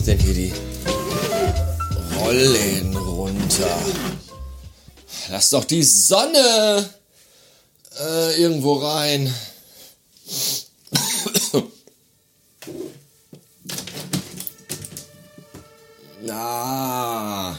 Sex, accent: male, German